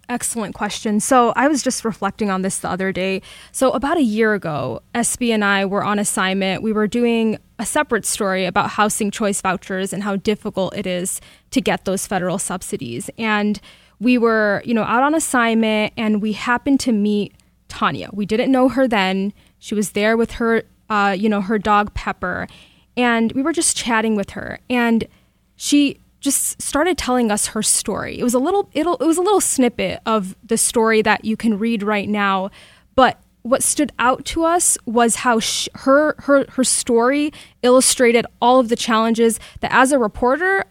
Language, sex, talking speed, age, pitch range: English, female, 190 wpm, 10-29, 210-250 Hz